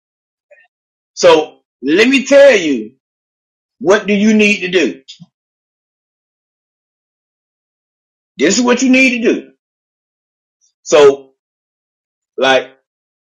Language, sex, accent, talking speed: English, male, American, 90 wpm